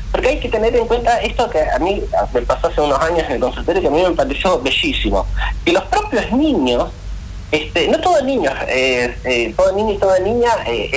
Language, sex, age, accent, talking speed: Spanish, male, 30-49, Argentinian, 220 wpm